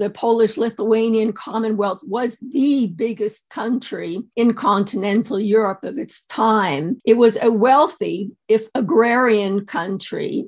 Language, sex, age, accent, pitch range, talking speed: Portuguese, female, 50-69, American, 220-255 Hz, 115 wpm